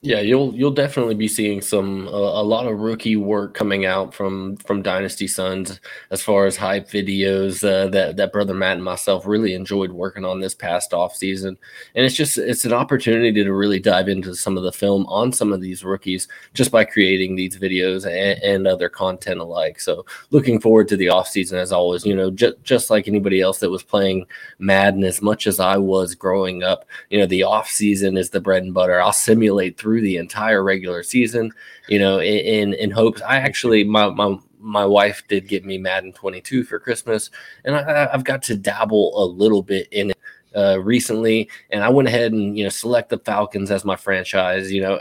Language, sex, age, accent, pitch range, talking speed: English, male, 20-39, American, 95-110 Hz, 210 wpm